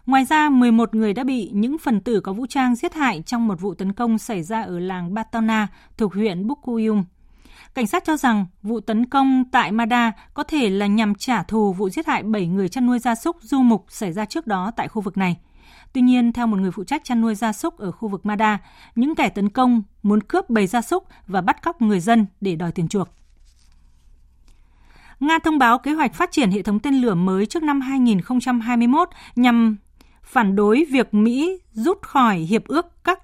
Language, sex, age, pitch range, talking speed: Vietnamese, female, 20-39, 205-265 Hz, 215 wpm